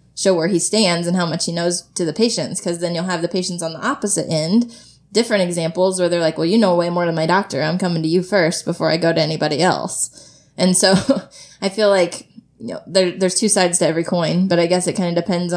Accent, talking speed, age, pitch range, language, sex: American, 260 wpm, 20-39, 165-185 Hz, English, female